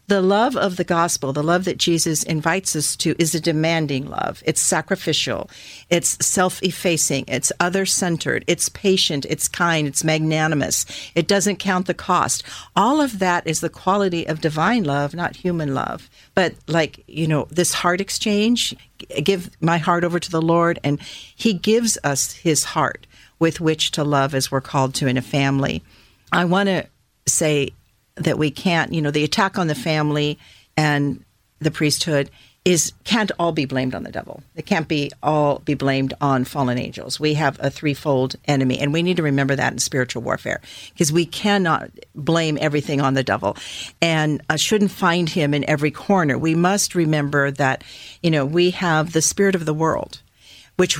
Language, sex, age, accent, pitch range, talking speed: English, female, 50-69, American, 140-175 Hz, 180 wpm